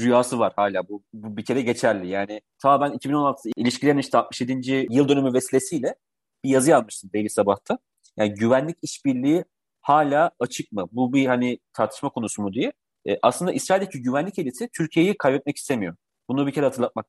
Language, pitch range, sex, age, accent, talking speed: Turkish, 115-150 Hz, male, 40-59, native, 170 wpm